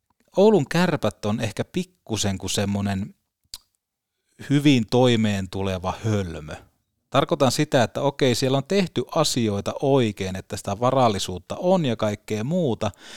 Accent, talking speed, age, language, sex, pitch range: native, 125 wpm, 30-49, Finnish, male, 100-140 Hz